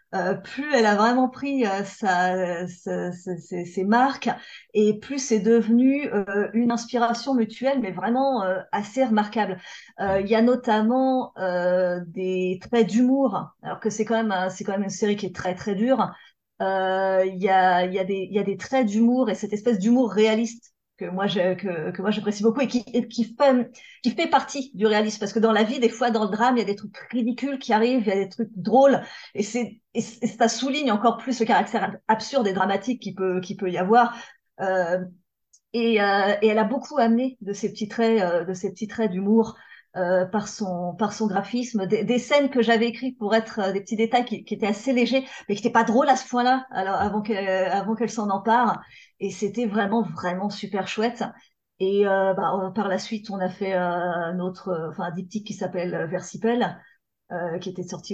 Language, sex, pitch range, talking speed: French, female, 190-240 Hz, 220 wpm